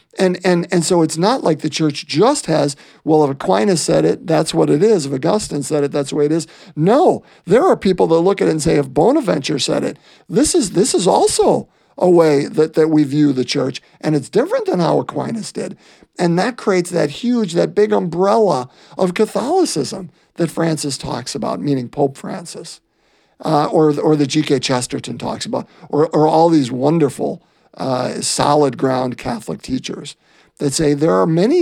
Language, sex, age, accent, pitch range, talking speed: English, male, 50-69, American, 140-170 Hz, 195 wpm